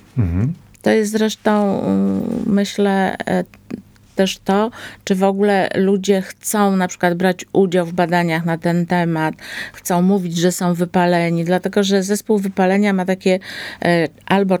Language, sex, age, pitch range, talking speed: Polish, female, 50-69, 175-210 Hz, 130 wpm